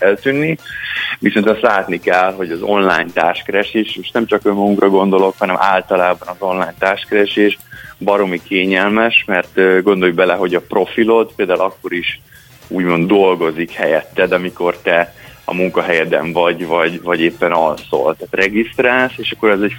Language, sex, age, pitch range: Hungarian, male, 20-39, 90-105 Hz